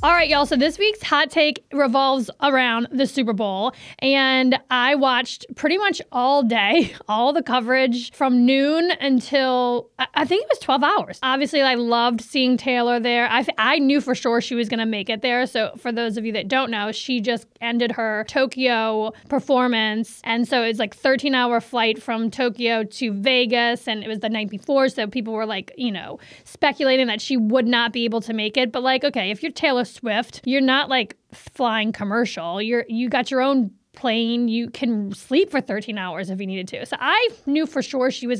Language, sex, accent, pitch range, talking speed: English, female, American, 230-280 Hz, 205 wpm